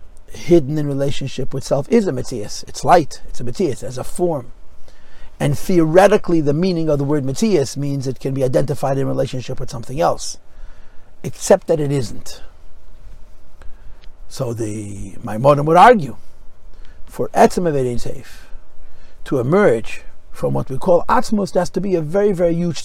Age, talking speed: 50-69, 160 wpm